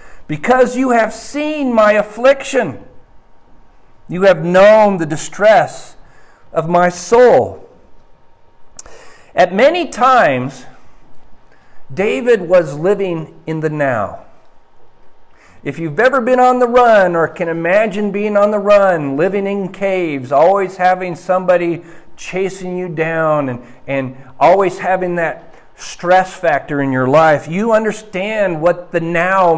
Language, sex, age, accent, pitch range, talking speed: English, male, 50-69, American, 160-210 Hz, 125 wpm